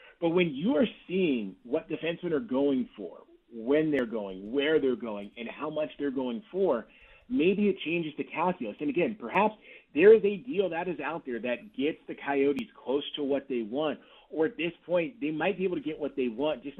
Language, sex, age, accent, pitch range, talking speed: English, male, 30-49, American, 140-195 Hz, 220 wpm